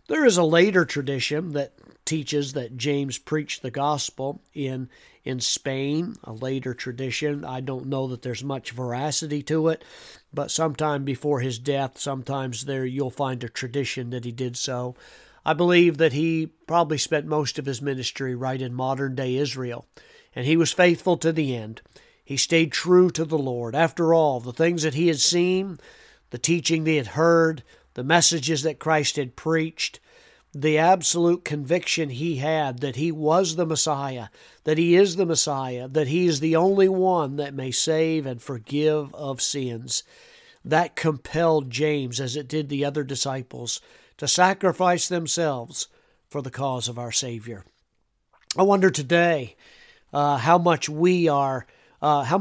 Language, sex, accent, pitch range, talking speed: English, male, American, 130-165 Hz, 165 wpm